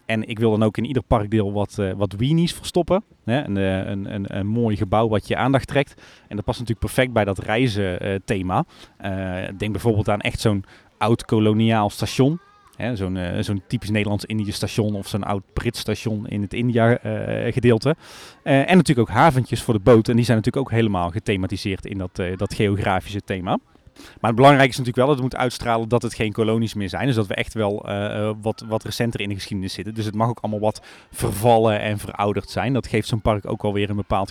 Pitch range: 105-125 Hz